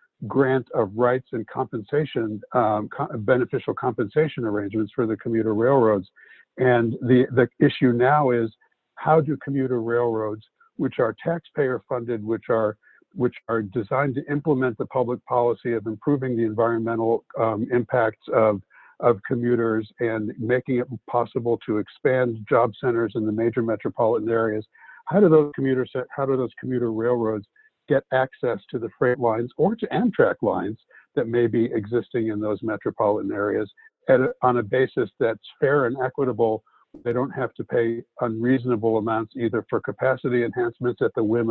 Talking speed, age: 160 wpm, 60-79